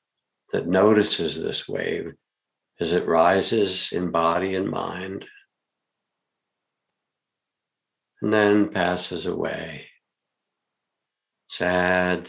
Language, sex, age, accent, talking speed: English, male, 60-79, American, 80 wpm